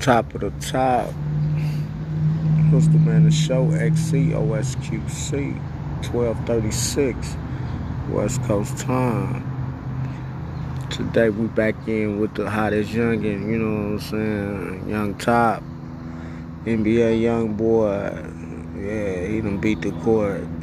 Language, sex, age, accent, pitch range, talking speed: English, male, 20-39, American, 95-115 Hz, 115 wpm